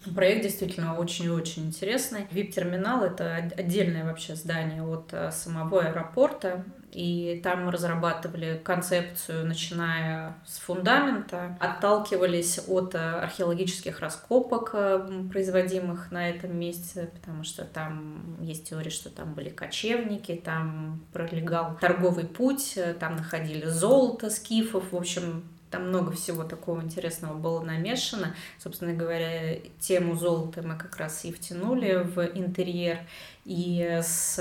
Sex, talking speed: female, 115 wpm